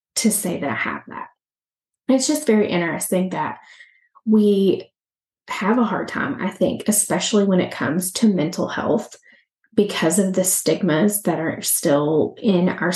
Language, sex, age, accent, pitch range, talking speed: English, female, 20-39, American, 185-225 Hz, 155 wpm